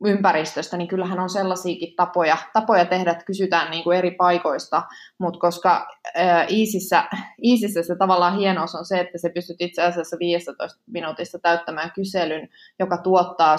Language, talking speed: Finnish, 155 wpm